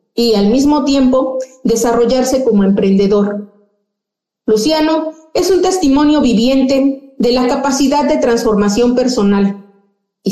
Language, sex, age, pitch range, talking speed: Spanish, female, 40-59, 205-275 Hz, 110 wpm